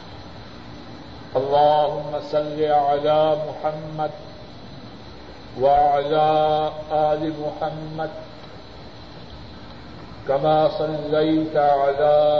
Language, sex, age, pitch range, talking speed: Urdu, male, 50-69, 145-155 Hz, 50 wpm